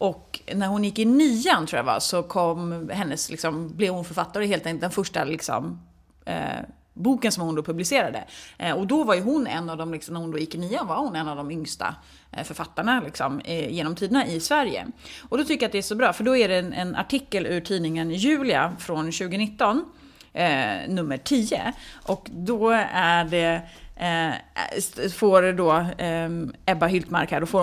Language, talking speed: Swedish, 200 wpm